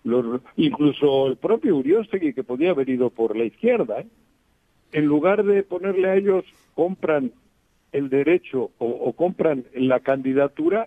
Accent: Mexican